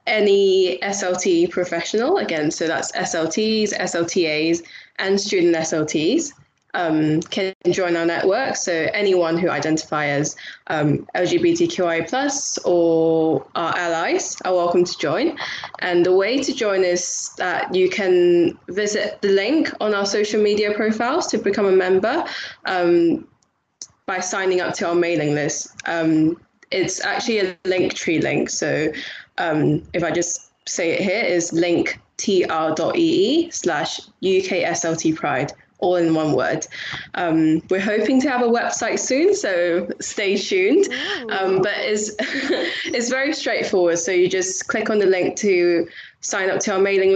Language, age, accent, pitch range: English, 10-29, British, 170-230 Hz